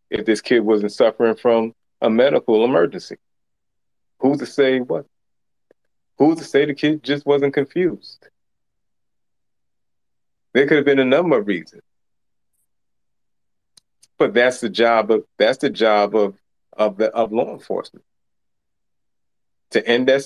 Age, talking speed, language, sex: 30-49, 135 wpm, English, male